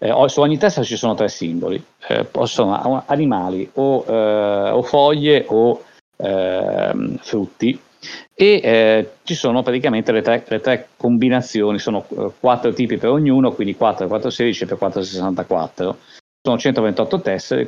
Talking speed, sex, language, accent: 145 wpm, male, Italian, native